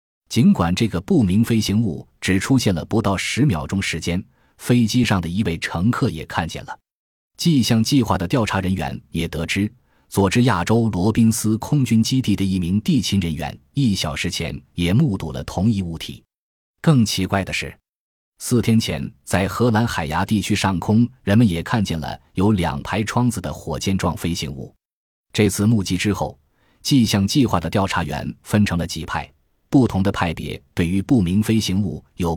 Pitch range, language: 85-115 Hz, Chinese